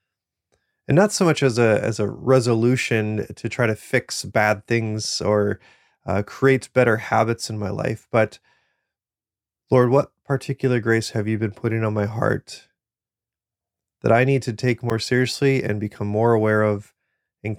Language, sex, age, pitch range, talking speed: English, male, 30-49, 105-125 Hz, 160 wpm